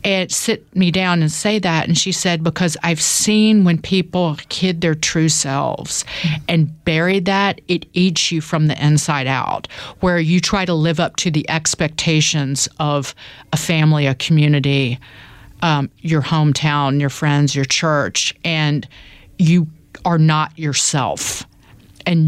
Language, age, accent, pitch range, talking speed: English, 40-59, American, 135-165 Hz, 150 wpm